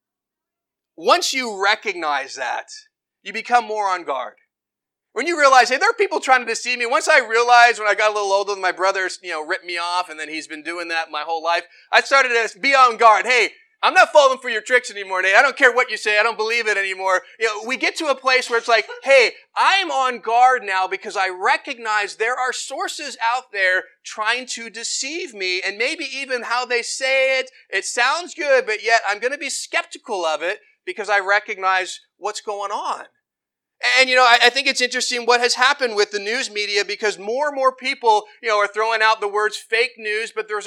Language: English